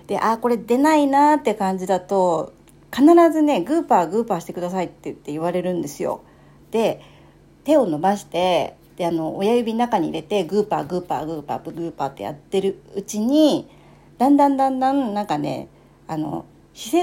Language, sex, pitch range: Japanese, female, 180-290 Hz